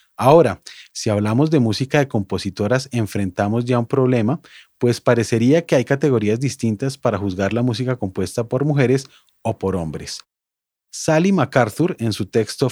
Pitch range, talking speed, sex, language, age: 110-145 Hz, 150 wpm, male, Spanish, 30-49